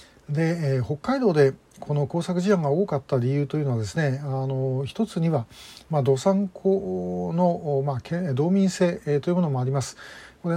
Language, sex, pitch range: Japanese, male, 135-180 Hz